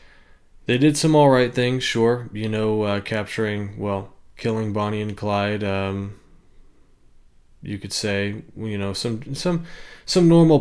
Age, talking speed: 20-39, 140 wpm